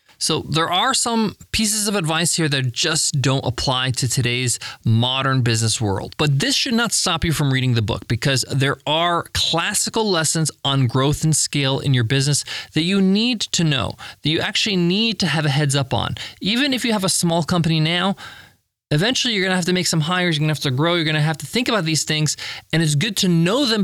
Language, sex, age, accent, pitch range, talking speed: English, male, 20-39, American, 140-190 Hz, 230 wpm